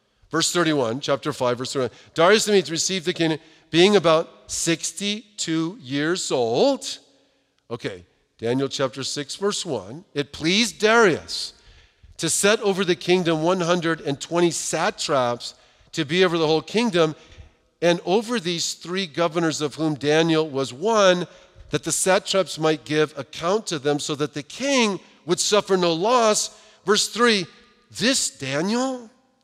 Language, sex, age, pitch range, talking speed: English, male, 50-69, 150-190 Hz, 140 wpm